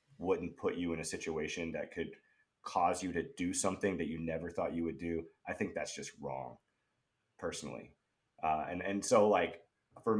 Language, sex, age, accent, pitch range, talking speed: English, male, 30-49, American, 95-130 Hz, 190 wpm